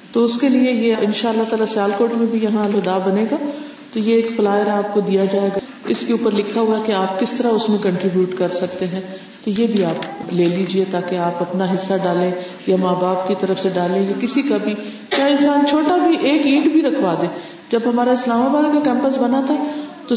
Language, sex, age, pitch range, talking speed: Urdu, female, 50-69, 205-280 Hz, 230 wpm